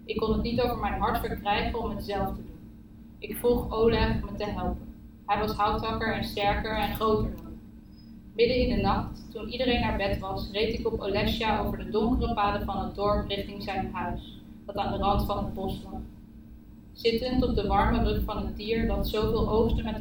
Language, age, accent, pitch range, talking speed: Dutch, 20-39, Dutch, 205-230 Hz, 215 wpm